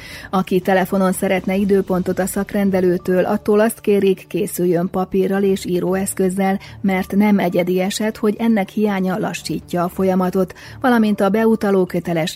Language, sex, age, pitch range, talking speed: Hungarian, female, 30-49, 175-200 Hz, 130 wpm